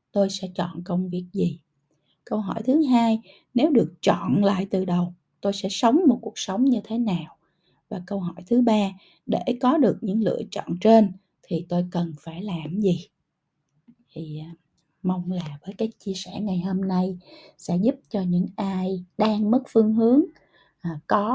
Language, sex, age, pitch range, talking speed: Vietnamese, female, 20-39, 170-215 Hz, 175 wpm